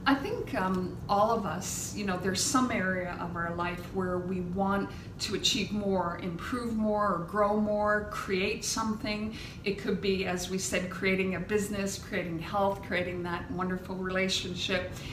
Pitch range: 185-220 Hz